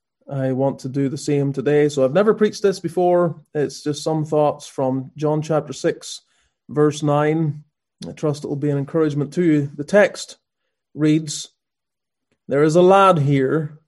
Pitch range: 145-165 Hz